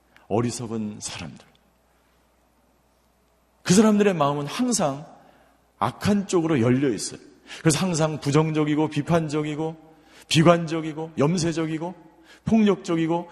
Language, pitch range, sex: Korean, 95-160 Hz, male